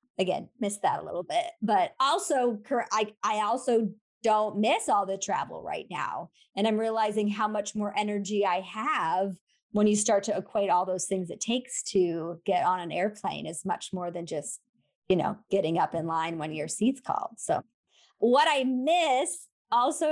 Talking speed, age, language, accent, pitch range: 185 wpm, 30-49, English, American, 205-265 Hz